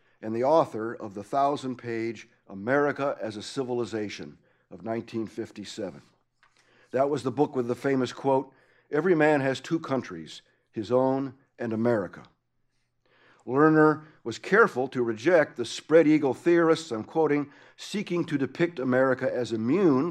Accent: American